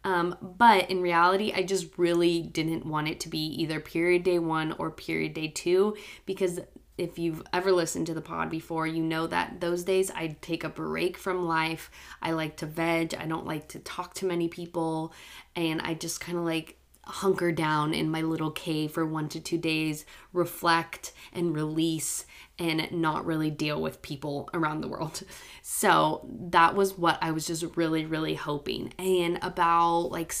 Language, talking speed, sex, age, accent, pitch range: English, 185 wpm, female, 20-39, American, 160-180 Hz